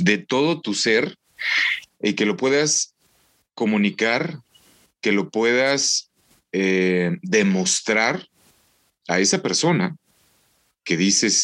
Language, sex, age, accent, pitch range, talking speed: Spanish, male, 40-59, Mexican, 90-140 Hz, 100 wpm